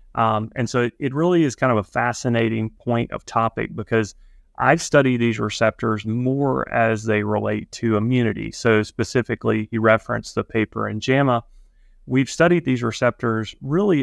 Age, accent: 30-49, American